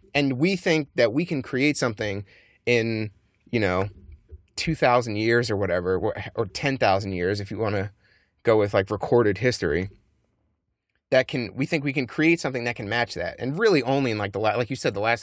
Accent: American